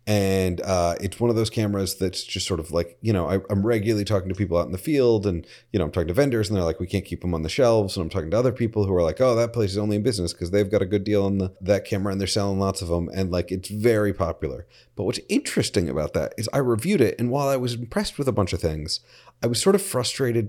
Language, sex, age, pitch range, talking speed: English, male, 30-49, 95-125 Hz, 300 wpm